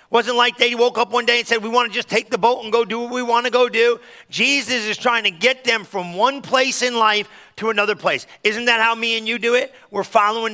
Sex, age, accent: male, 40-59, American